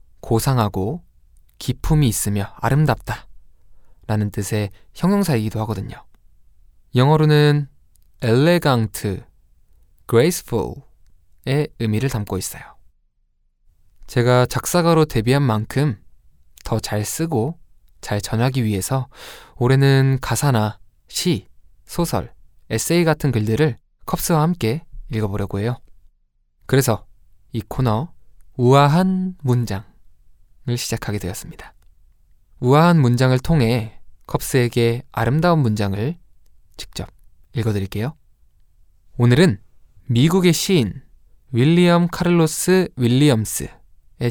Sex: male